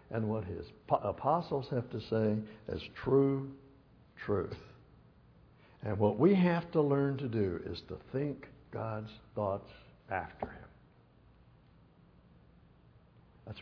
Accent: American